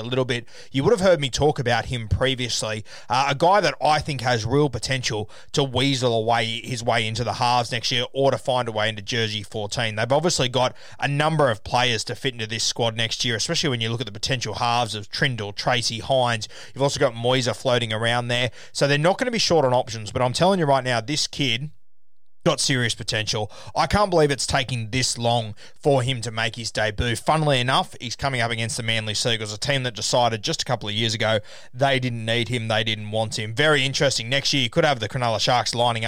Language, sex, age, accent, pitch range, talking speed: English, male, 20-39, Australian, 115-135 Hz, 235 wpm